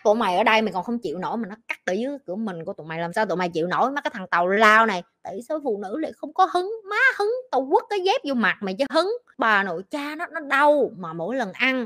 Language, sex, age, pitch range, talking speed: Vietnamese, female, 20-39, 215-310 Hz, 305 wpm